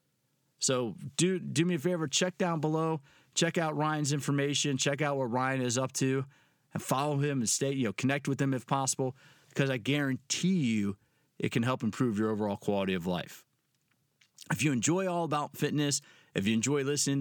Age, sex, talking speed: 40-59, male, 190 wpm